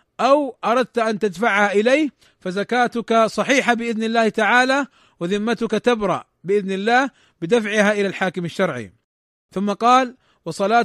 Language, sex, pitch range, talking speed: Arabic, male, 195-240 Hz, 115 wpm